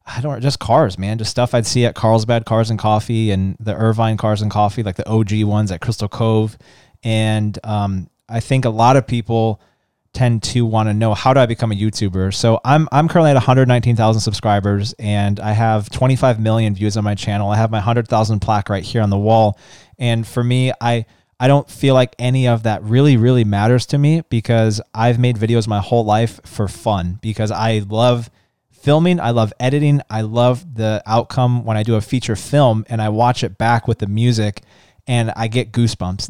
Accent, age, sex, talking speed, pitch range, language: American, 20-39, male, 210 wpm, 110-125 Hz, English